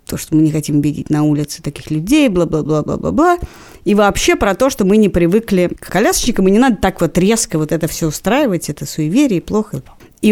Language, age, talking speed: Russian, 30-49, 225 wpm